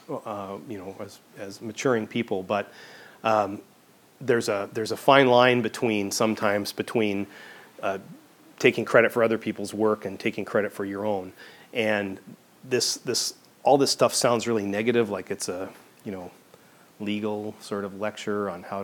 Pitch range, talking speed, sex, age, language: 100-120 Hz, 170 wpm, male, 30-49, English